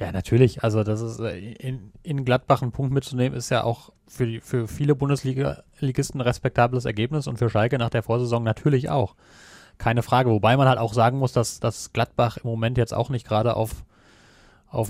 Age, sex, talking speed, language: 30-49, male, 195 wpm, German